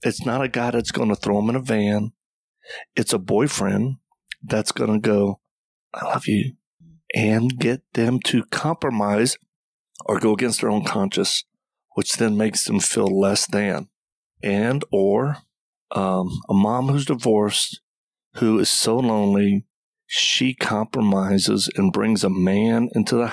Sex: male